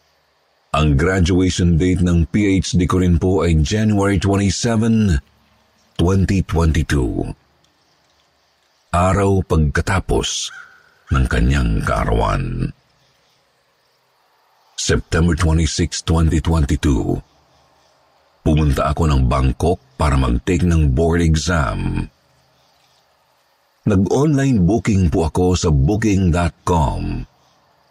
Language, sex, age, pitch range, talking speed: Filipino, male, 50-69, 75-100 Hz, 75 wpm